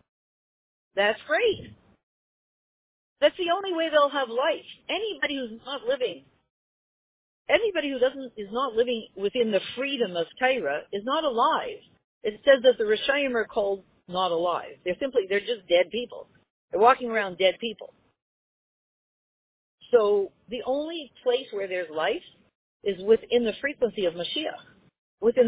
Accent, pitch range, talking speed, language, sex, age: American, 185-270 Hz, 145 wpm, English, female, 50-69